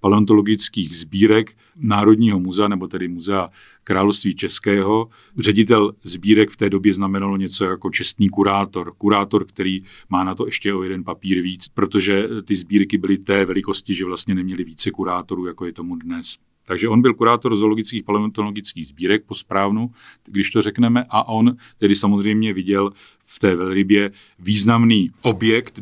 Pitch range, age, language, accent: 95-115 Hz, 40-59, Czech, native